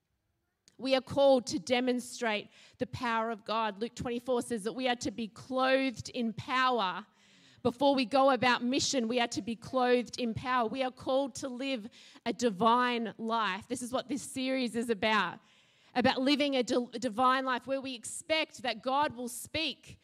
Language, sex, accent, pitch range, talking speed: English, female, Australian, 230-290 Hz, 180 wpm